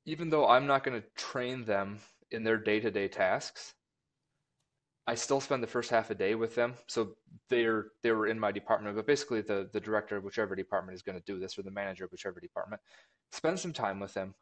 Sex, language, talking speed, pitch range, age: male, English, 220 wpm, 105-130 Hz, 20-39